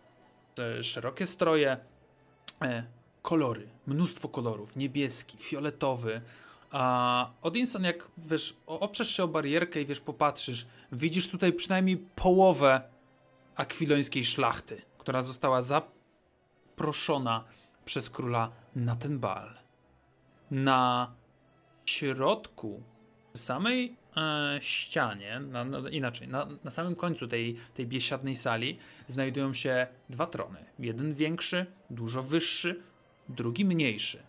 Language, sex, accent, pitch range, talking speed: Polish, male, native, 120-155 Hz, 100 wpm